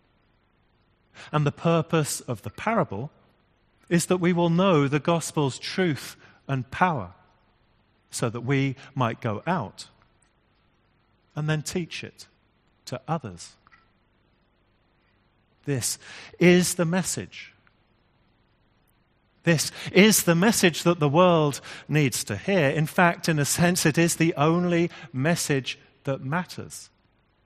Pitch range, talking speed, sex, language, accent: 110-155 Hz, 120 wpm, male, English, British